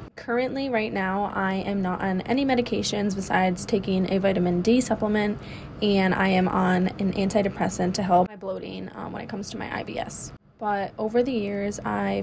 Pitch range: 185-220 Hz